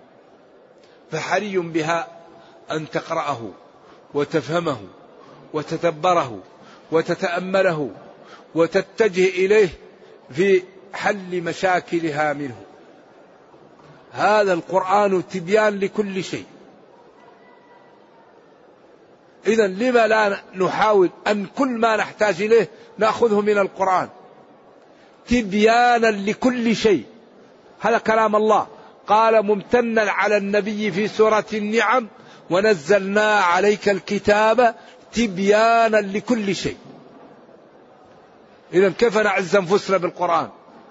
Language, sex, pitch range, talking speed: Arabic, male, 185-225 Hz, 80 wpm